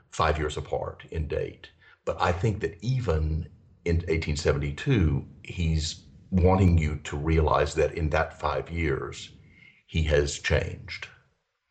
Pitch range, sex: 75-90 Hz, male